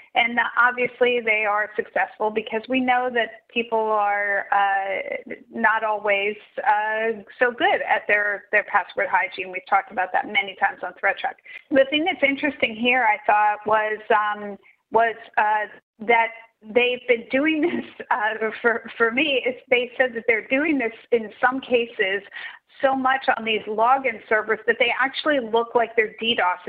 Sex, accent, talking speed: female, American, 160 wpm